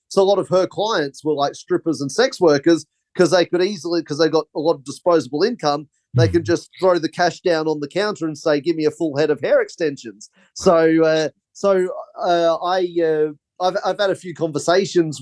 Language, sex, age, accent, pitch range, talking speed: English, male, 30-49, Australian, 155-185 Hz, 220 wpm